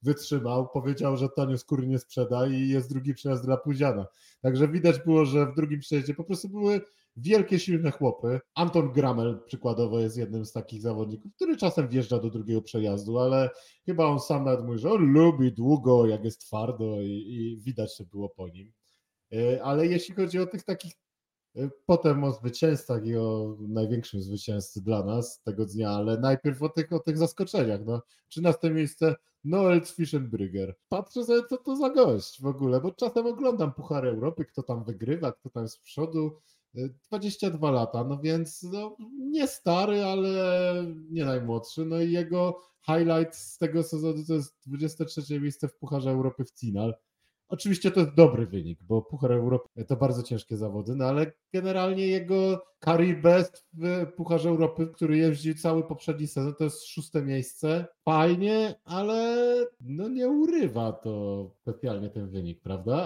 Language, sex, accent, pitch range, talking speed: Polish, male, native, 115-170 Hz, 165 wpm